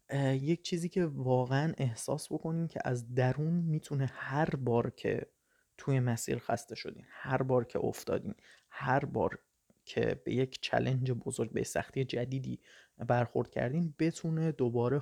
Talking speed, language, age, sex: 140 wpm, Persian, 30-49, male